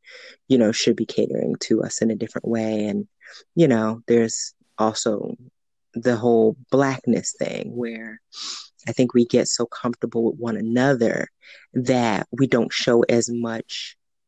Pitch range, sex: 120-170 Hz, female